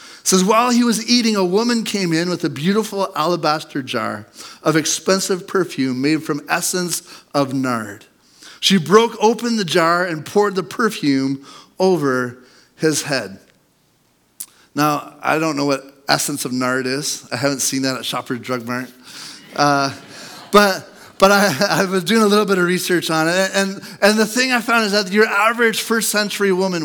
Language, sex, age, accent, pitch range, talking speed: English, male, 40-59, American, 155-205 Hz, 175 wpm